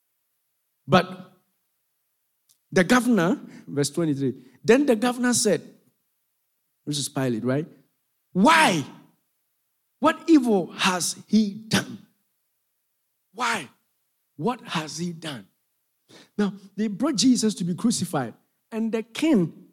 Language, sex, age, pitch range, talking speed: English, male, 50-69, 140-225 Hz, 105 wpm